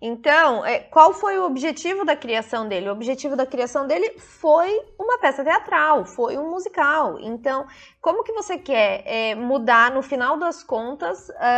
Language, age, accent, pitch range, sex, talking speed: Portuguese, 20-39, Brazilian, 225-315 Hz, female, 155 wpm